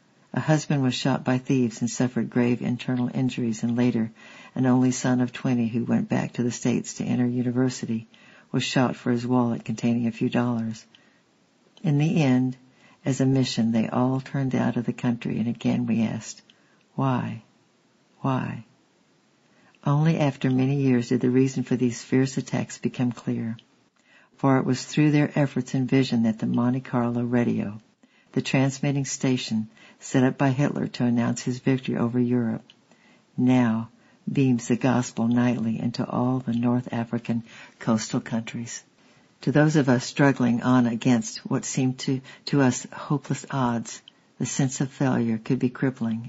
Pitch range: 120-135 Hz